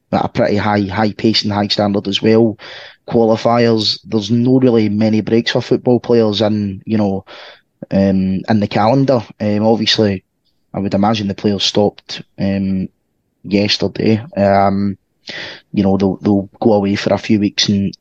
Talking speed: 160 wpm